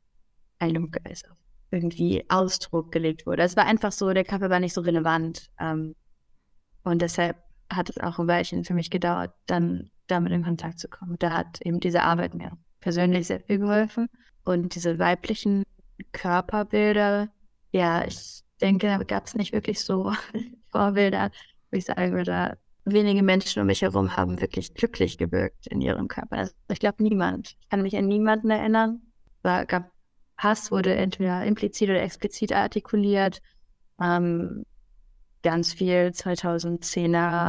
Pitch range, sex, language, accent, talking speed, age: 170-195 Hz, female, German, German, 150 wpm, 20-39